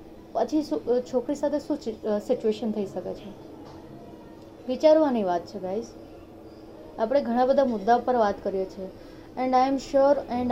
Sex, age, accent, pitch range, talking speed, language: female, 30-49, native, 215-260 Hz, 110 wpm, Gujarati